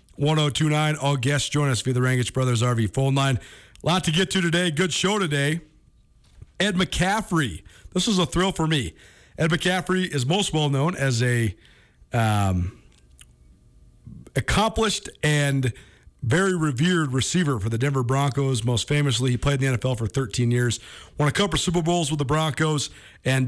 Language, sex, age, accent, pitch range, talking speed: English, male, 40-59, American, 120-155 Hz, 175 wpm